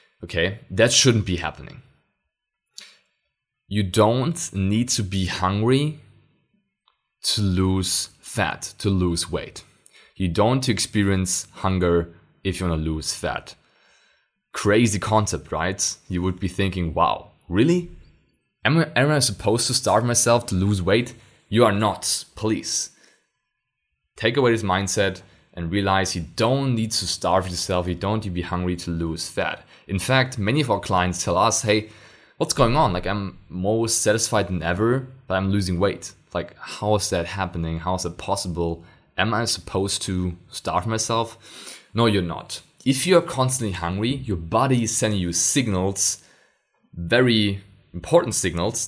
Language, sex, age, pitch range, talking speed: English, male, 20-39, 90-115 Hz, 155 wpm